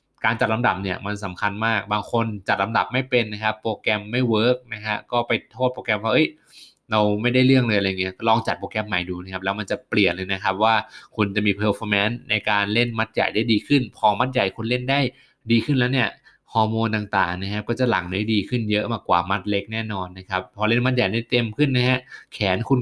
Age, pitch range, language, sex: 20-39, 100-125 Hz, Thai, male